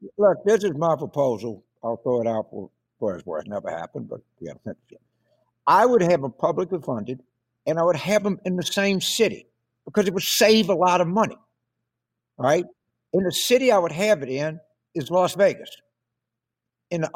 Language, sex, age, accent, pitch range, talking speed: English, male, 60-79, American, 130-185 Hz, 190 wpm